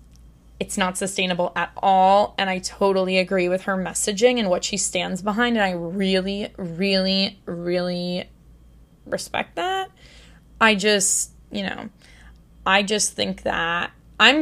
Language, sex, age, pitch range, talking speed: English, female, 20-39, 180-215 Hz, 135 wpm